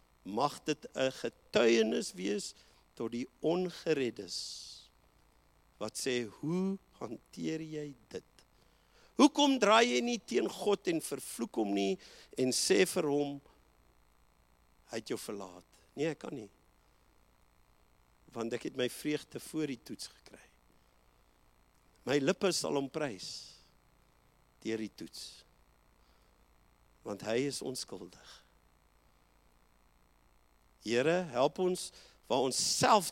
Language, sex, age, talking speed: English, male, 50-69, 115 wpm